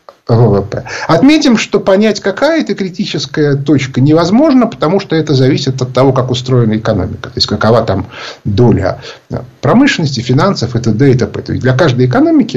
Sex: male